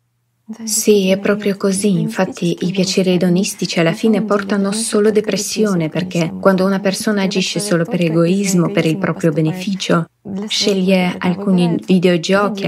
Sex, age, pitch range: female, 20-39, 175-210 Hz